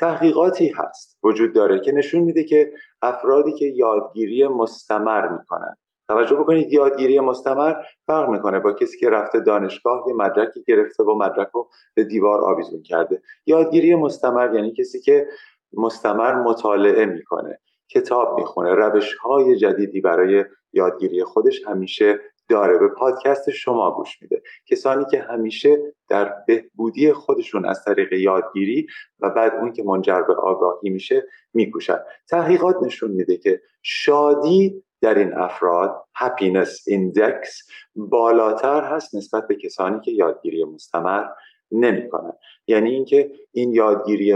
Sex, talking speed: male, 130 wpm